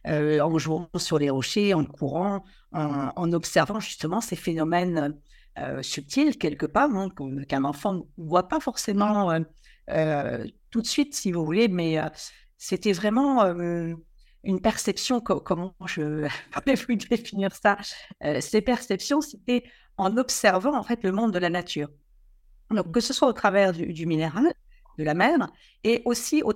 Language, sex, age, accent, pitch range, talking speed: French, female, 60-79, French, 155-215 Hz, 165 wpm